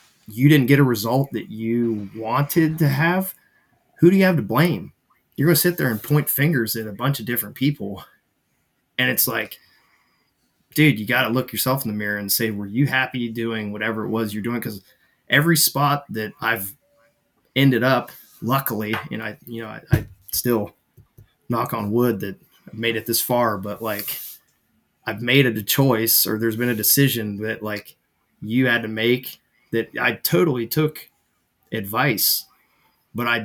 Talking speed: 180 wpm